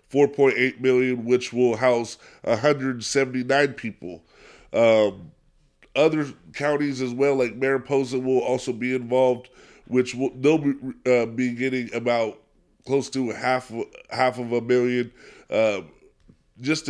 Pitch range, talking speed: 120-135 Hz, 125 wpm